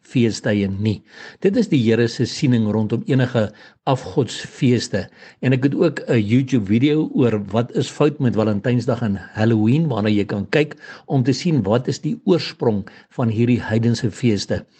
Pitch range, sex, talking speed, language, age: 110-135 Hz, male, 160 wpm, English, 60-79